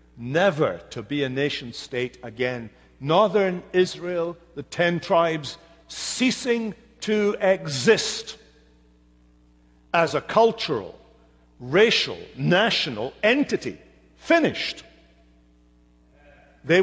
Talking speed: 80 wpm